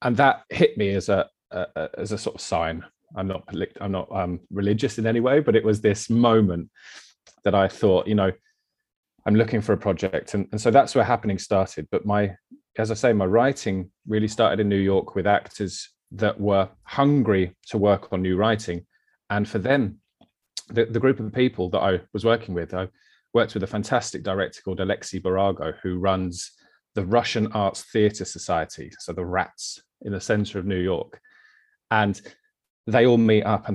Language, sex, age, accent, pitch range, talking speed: English, male, 30-49, British, 95-120 Hz, 195 wpm